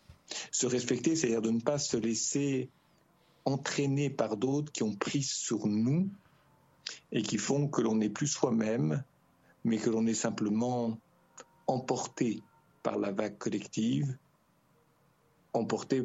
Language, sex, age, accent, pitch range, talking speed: French, male, 60-79, French, 115-150 Hz, 130 wpm